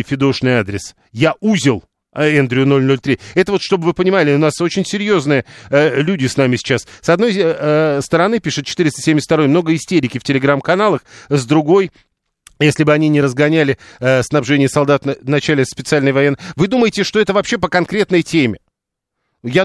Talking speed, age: 165 wpm, 40-59